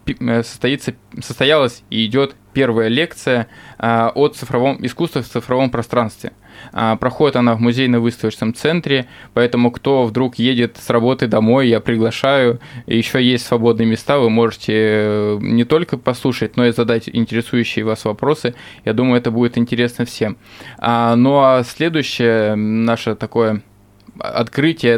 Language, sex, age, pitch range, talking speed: Russian, male, 20-39, 115-130 Hz, 130 wpm